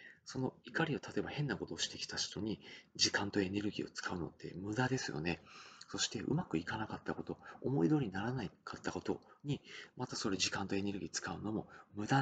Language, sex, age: Japanese, male, 40-59